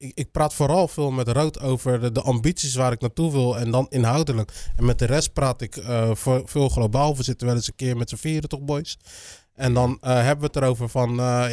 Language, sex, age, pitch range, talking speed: Dutch, male, 20-39, 125-150 Hz, 240 wpm